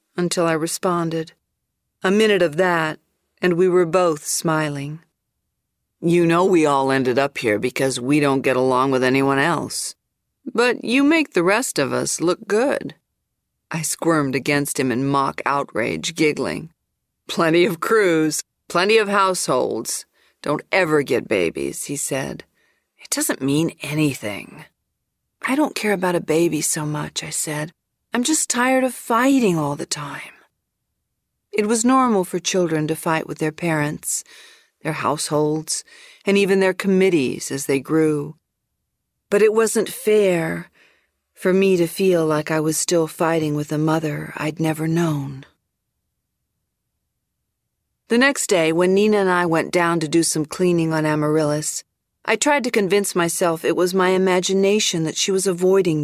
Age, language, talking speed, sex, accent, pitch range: 50-69, English, 155 wpm, female, American, 150-195 Hz